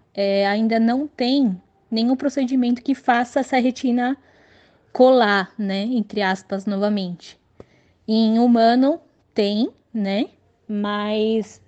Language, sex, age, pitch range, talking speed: Portuguese, female, 10-29, 205-250 Hz, 105 wpm